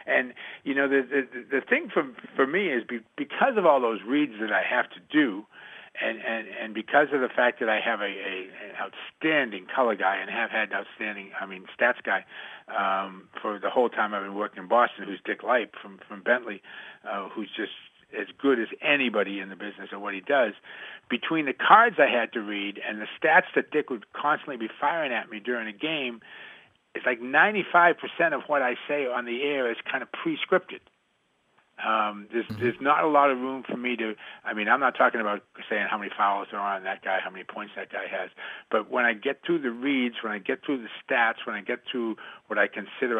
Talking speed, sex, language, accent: 230 wpm, male, English, American